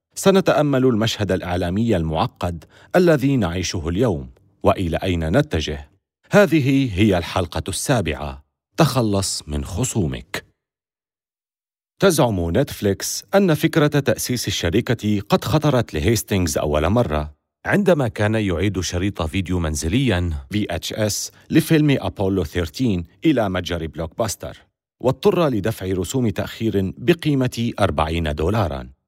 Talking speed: 100 wpm